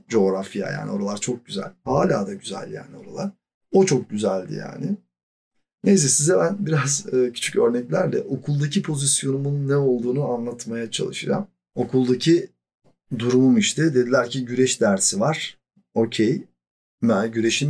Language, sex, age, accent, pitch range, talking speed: Turkish, male, 40-59, native, 115-150 Hz, 120 wpm